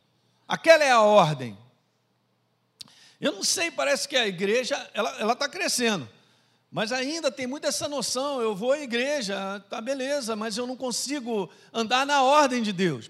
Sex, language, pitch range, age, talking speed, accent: male, Portuguese, 190-255 Hz, 50-69, 165 wpm, Brazilian